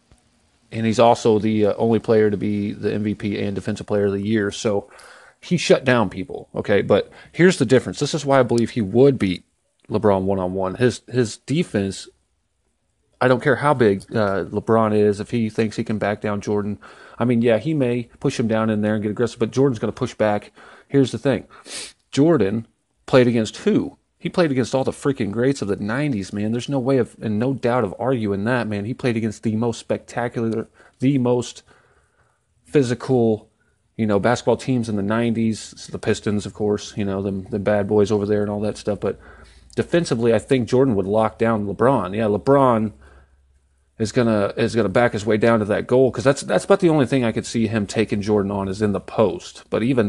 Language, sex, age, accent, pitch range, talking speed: English, male, 30-49, American, 105-125 Hz, 210 wpm